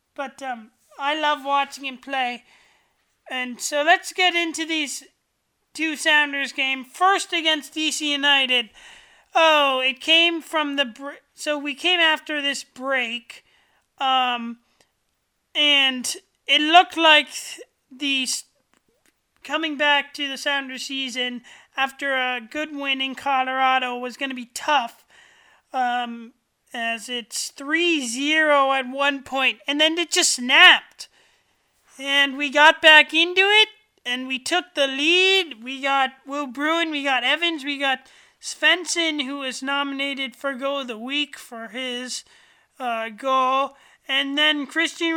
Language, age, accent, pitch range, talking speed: English, 30-49, American, 265-310 Hz, 140 wpm